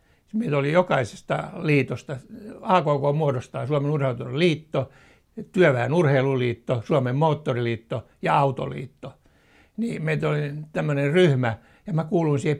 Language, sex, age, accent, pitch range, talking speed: Finnish, male, 60-79, native, 120-170 Hz, 110 wpm